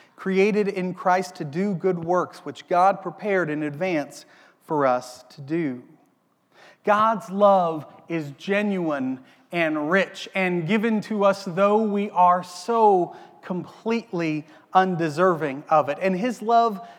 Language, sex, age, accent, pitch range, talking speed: English, male, 30-49, American, 165-205 Hz, 130 wpm